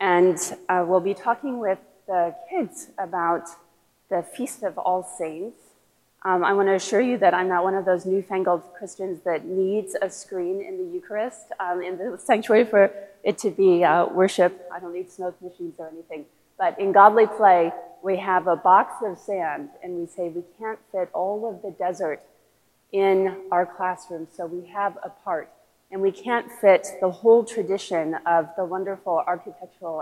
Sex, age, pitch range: female, 30-49, 175-210 Hz